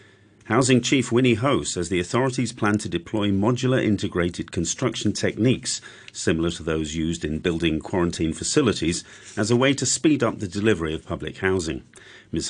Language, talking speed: English, 165 wpm